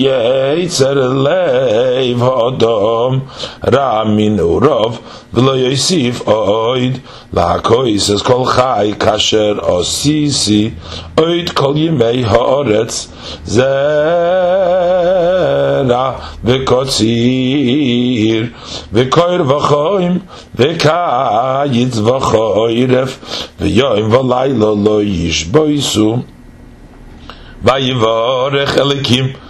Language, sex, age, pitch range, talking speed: English, male, 50-69, 110-145 Hz, 60 wpm